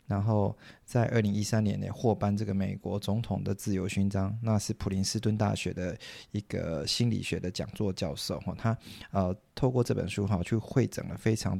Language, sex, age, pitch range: Chinese, male, 20-39, 95-110 Hz